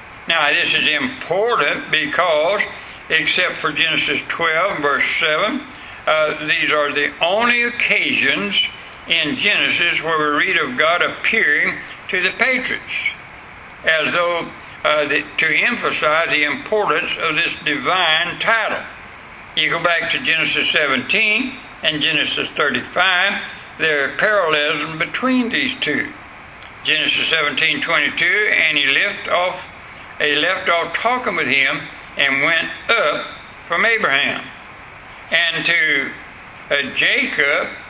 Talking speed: 120 wpm